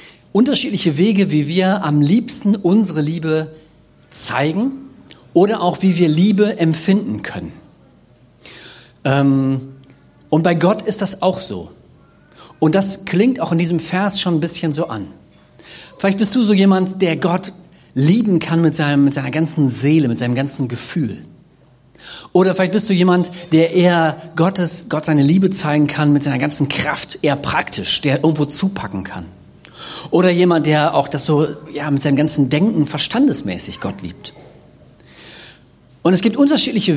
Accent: German